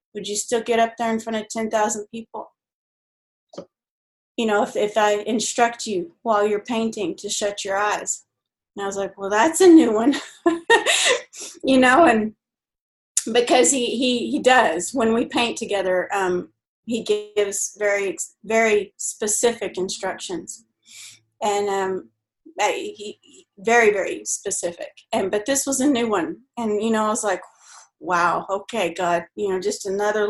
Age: 30-49